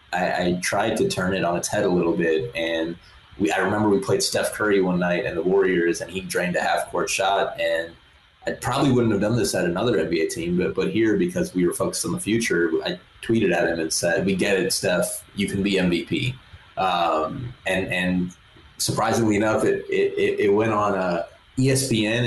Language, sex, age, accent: English, male, 20-39, American